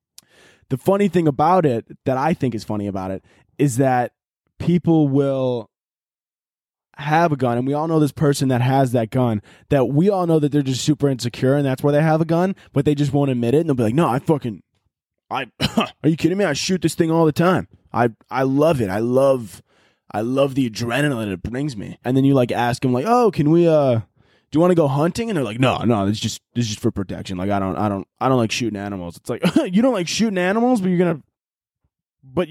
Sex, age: male, 20-39